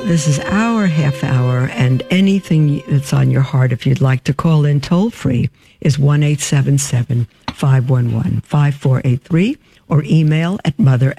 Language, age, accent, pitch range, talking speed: English, 60-79, American, 135-170 Hz, 140 wpm